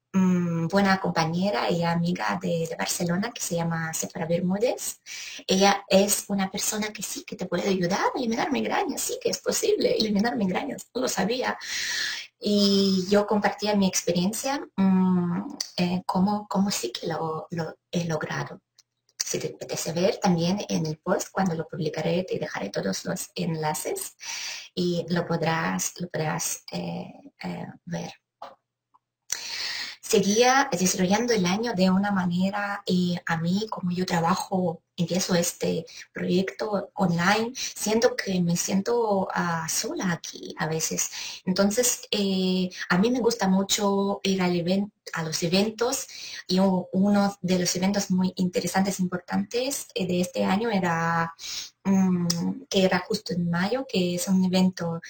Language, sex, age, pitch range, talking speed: Spanish, female, 20-39, 175-205 Hz, 150 wpm